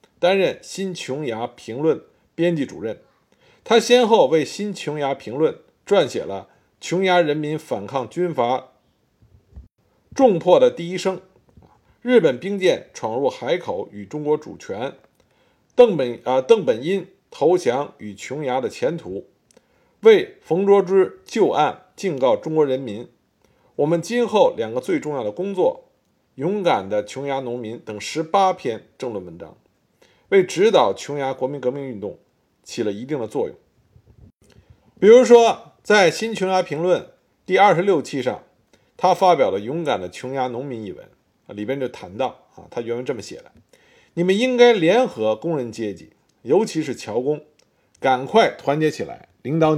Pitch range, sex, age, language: 125-195 Hz, male, 50-69, Chinese